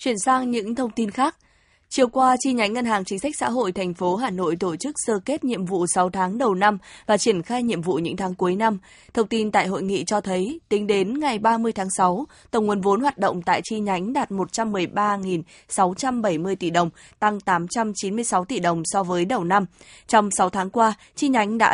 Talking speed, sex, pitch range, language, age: 220 wpm, female, 185-230 Hz, Vietnamese, 20-39